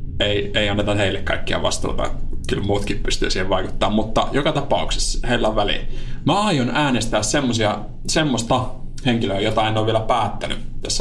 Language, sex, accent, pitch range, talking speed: Finnish, male, native, 95-115 Hz, 155 wpm